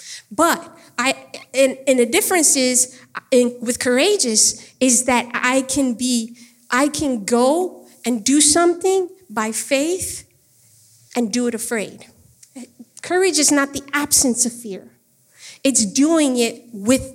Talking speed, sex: 125 wpm, female